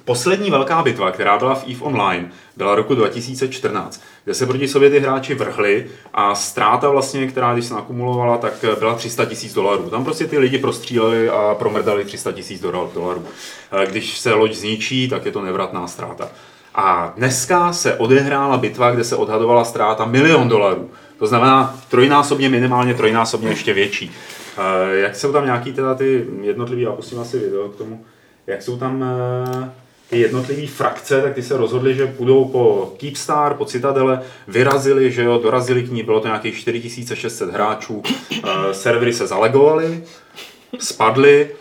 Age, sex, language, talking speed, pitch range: 30-49, male, Czech, 160 wpm, 110-140 Hz